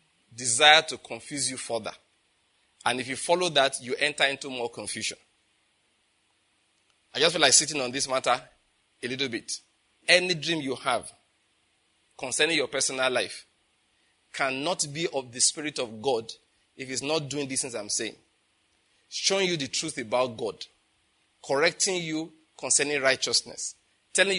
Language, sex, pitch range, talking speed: English, male, 125-160 Hz, 150 wpm